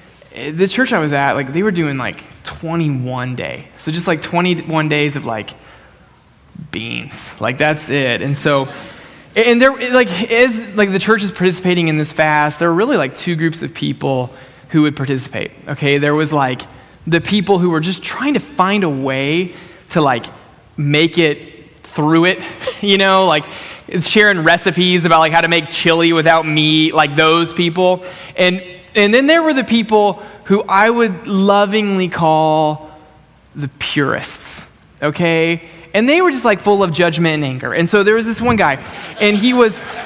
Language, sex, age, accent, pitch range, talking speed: English, male, 20-39, American, 155-195 Hz, 180 wpm